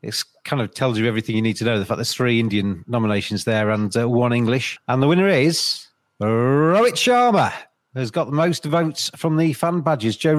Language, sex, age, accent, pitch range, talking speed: English, male, 40-59, British, 125-155 Hz, 215 wpm